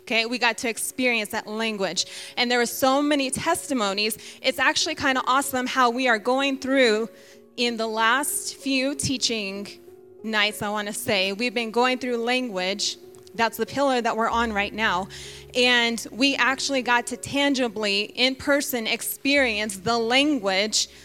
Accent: American